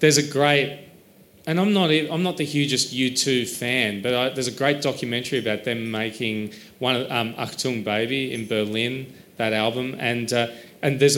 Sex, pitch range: male, 125-145 Hz